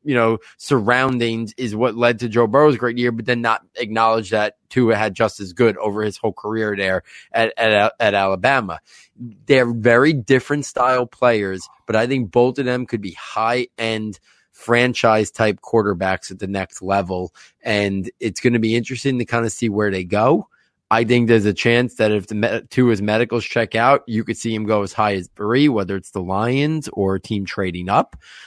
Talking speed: 195 wpm